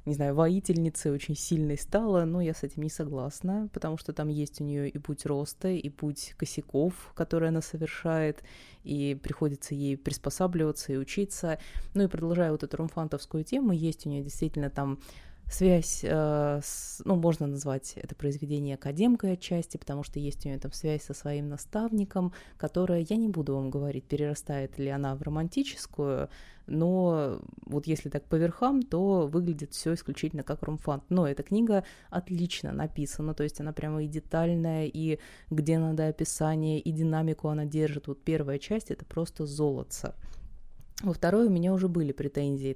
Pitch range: 145-170 Hz